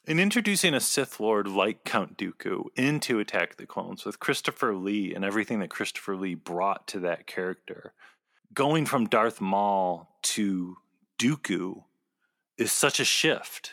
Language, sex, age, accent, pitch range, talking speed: English, male, 30-49, American, 95-120 Hz, 155 wpm